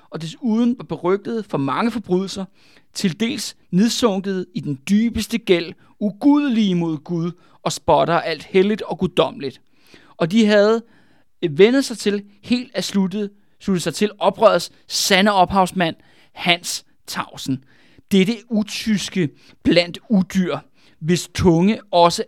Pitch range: 165-220 Hz